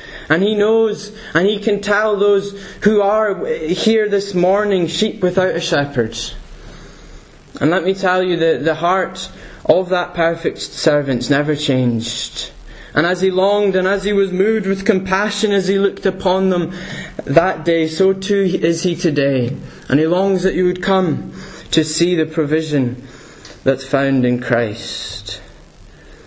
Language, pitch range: English, 140-190 Hz